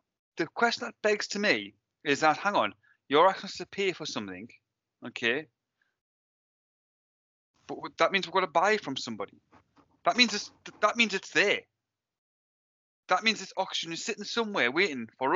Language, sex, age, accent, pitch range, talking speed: English, male, 30-49, British, 140-205 Hz, 170 wpm